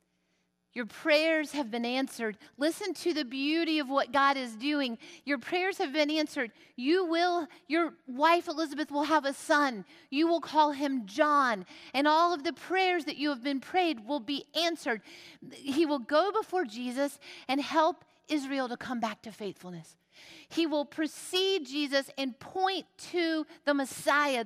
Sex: female